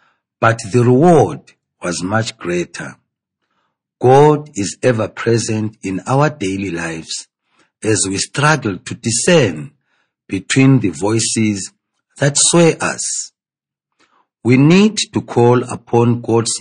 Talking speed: 110 wpm